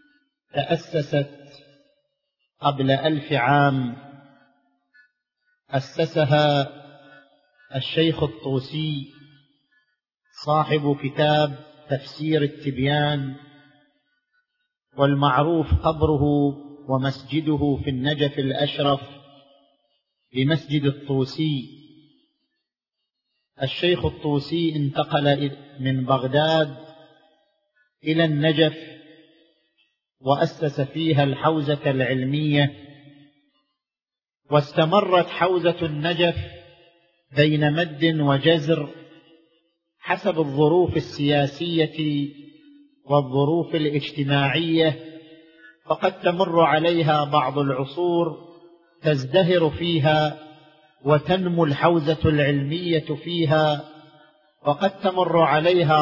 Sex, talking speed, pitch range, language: male, 60 wpm, 145-165 Hz, Arabic